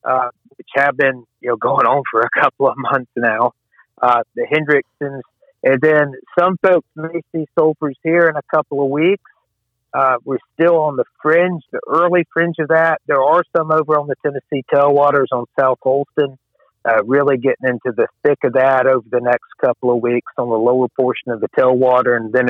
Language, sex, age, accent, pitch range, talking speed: English, male, 50-69, American, 120-150 Hz, 200 wpm